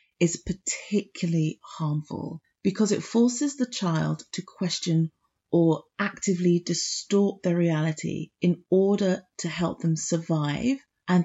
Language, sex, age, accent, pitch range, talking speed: English, female, 30-49, British, 160-195 Hz, 115 wpm